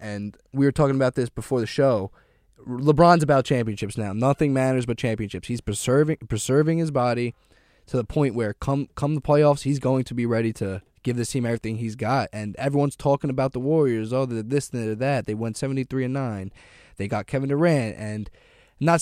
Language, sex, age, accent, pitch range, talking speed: English, male, 20-39, American, 110-145 Hz, 205 wpm